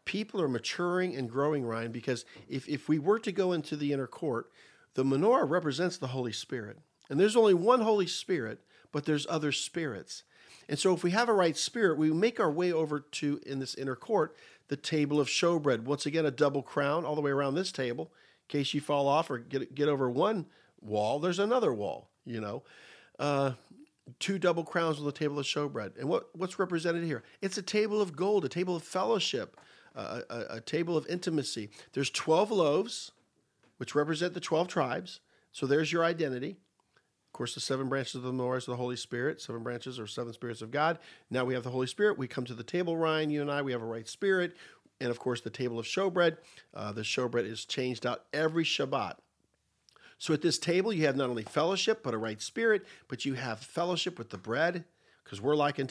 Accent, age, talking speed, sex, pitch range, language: American, 50-69, 215 wpm, male, 125-170 Hz, English